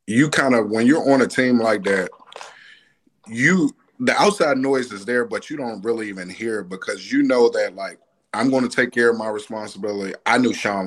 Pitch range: 115-140 Hz